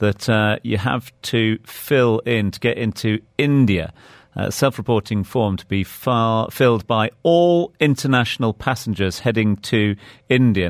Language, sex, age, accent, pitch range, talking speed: English, male, 40-59, British, 105-130 Hz, 140 wpm